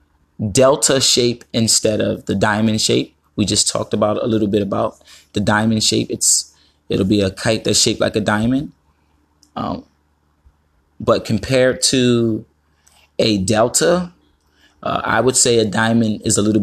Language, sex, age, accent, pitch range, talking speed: English, male, 20-39, American, 75-120 Hz, 155 wpm